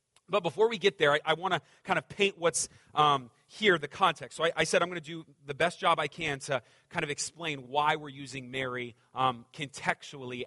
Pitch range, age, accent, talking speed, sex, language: 135-190 Hz, 30-49, American, 225 wpm, male, English